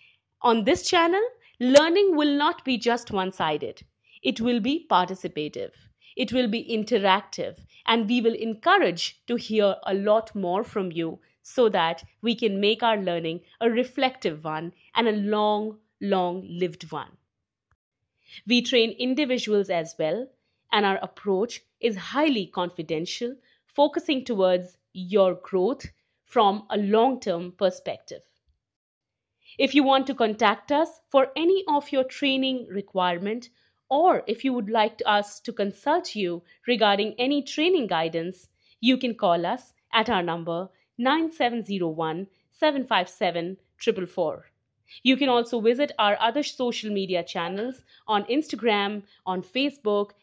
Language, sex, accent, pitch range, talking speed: English, female, Indian, 190-260 Hz, 135 wpm